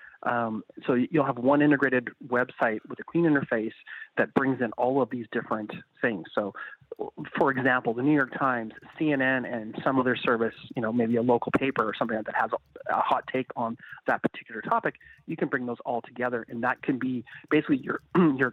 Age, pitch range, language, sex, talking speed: 30-49, 120-150 Hz, English, male, 200 wpm